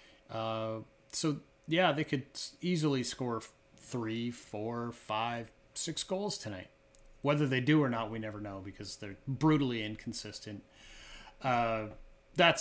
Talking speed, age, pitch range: 130 wpm, 30-49, 110-135 Hz